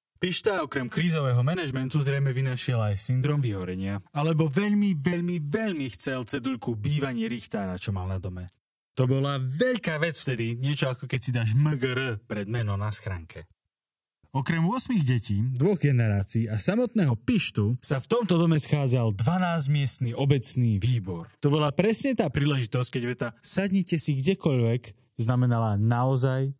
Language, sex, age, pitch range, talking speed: Slovak, male, 20-39, 110-150 Hz, 145 wpm